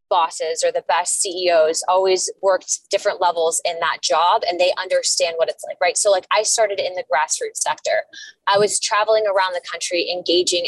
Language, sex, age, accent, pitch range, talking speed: English, female, 20-39, American, 180-230 Hz, 190 wpm